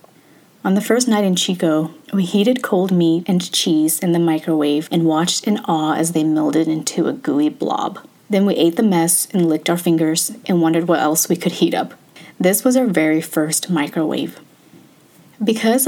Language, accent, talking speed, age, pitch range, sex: English, American, 190 wpm, 30-49, 160-185 Hz, female